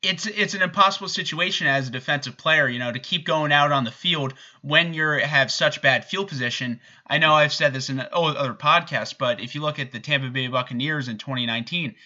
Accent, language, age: American, English, 30-49